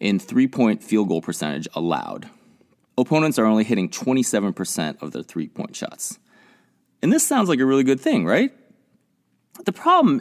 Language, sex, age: English, male, 30-49